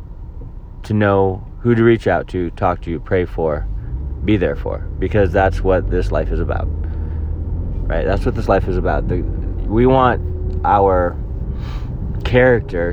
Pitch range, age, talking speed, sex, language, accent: 90-115 Hz, 30-49, 160 wpm, male, English, American